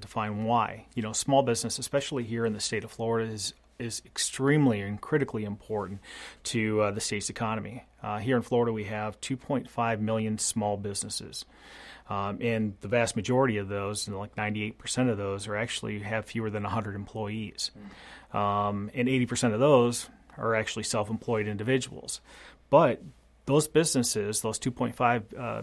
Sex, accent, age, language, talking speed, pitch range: male, American, 30-49, English, 160 wpm, 110-125 Hz